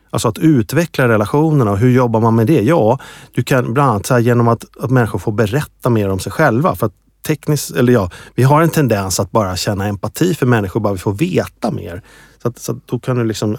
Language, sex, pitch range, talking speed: Swedish, male, 100-130 Hz, 245 wpm